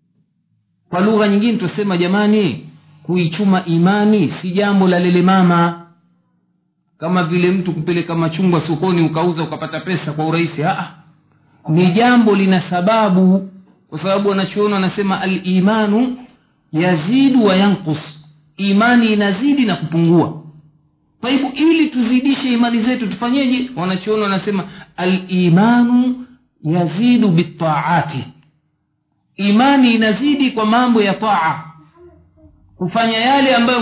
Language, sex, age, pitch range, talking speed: Swahili, male, 50-69, 170-235 Hz, 105 wpm